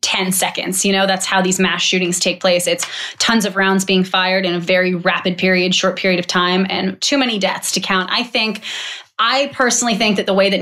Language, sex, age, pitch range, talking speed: English, female, 20-39, 185-200 Hz, 230 wpm